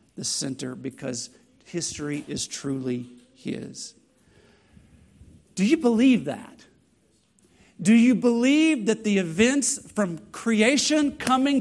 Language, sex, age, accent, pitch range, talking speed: English, male, 50-69, American, 170-235 Hz, 105 wpm